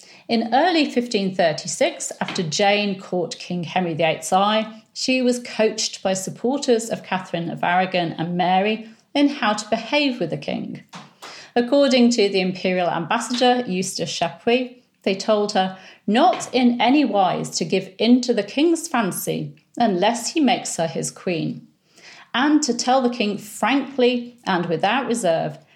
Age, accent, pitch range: 40-59, British, 180-240 Hz